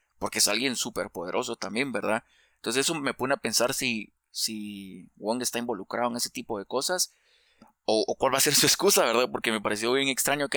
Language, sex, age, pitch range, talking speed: Spanish, male, 20-39, 110-125 Hz, 215 wpm